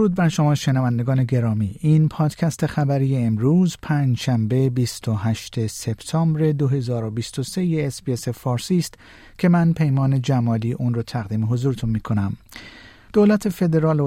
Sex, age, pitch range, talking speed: male, 50-69, 120-155 Hz, 120 wpm